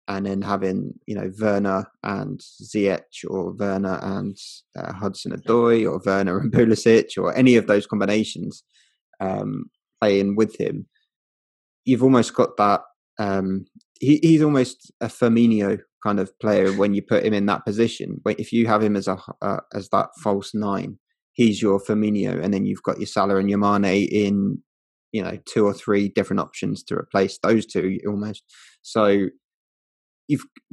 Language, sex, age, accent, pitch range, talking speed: English, male, 20-39, British, 100-115 Hz, 170 wpm